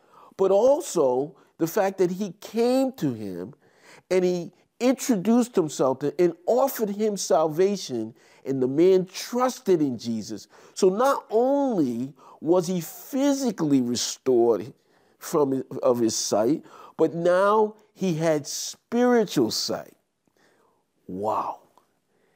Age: 50-69